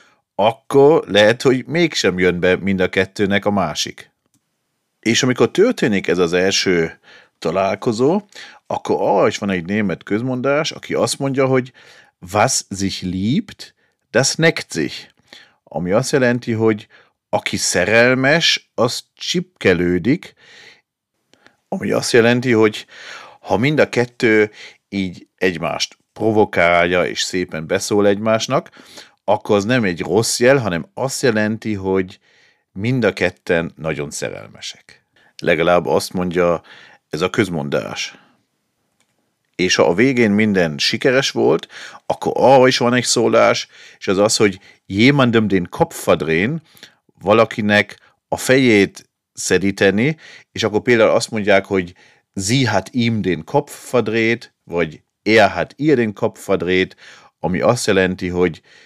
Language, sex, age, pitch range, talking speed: Hungarian, male, 40-59, 95-120 Hz, 120 wpm